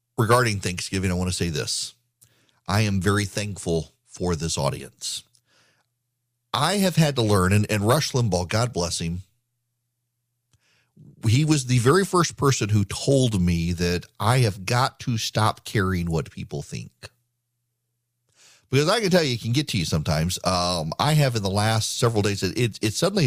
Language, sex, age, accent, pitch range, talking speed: English, male, 40-59, American, 95-125 Hz, 175 wpm